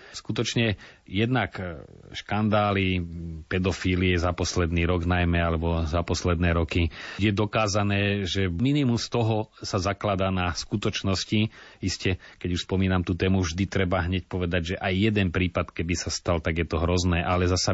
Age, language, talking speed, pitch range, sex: 30-49, Slovak, 150 wpm, 90-100 Hz, male